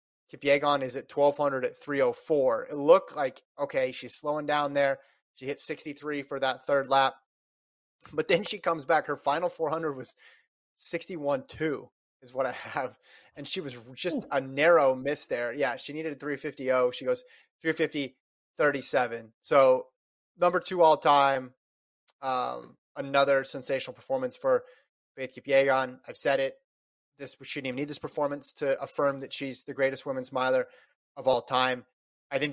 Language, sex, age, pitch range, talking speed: English, male, 20-39, 135-170 Hz, 155 wpm